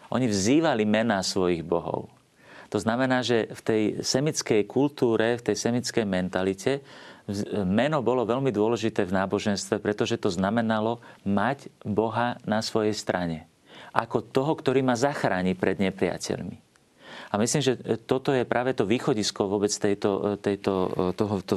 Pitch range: 100-120 Hz